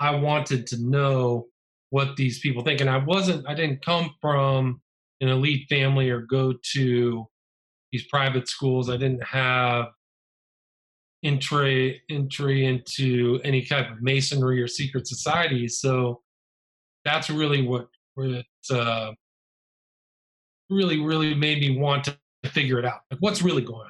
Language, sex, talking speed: English, male, 140 wpm